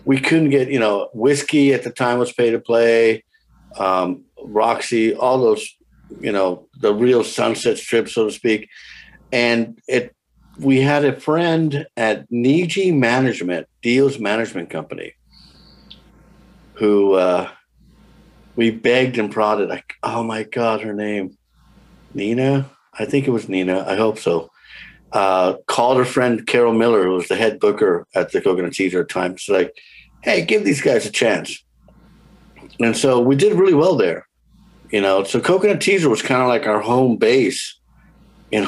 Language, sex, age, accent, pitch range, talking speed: English, male, 50-69, American, 110-140 Hz, 160 wpm